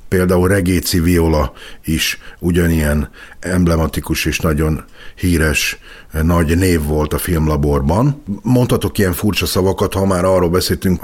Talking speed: 120 wpm